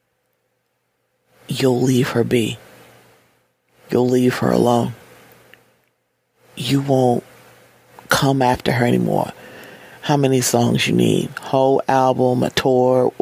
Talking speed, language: 105 wpm, English